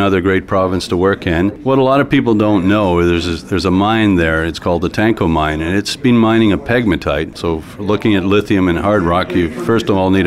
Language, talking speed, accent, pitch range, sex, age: English, 245 wpm, American, 90-105 Hz, male, 50-69